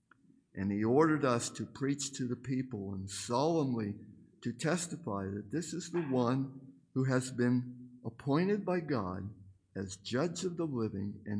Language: English